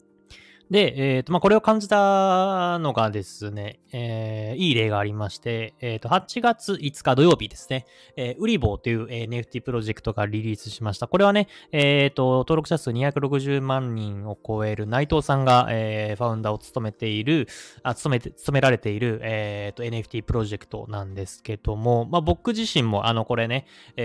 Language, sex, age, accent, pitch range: Japanese, male, 20-39, native, 110-145 Hz